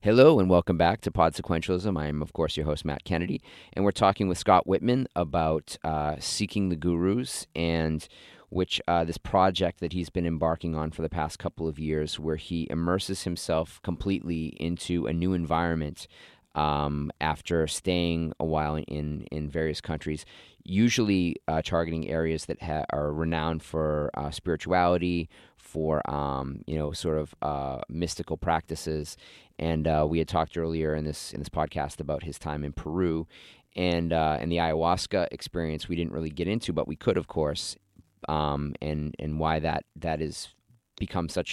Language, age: English, 30-49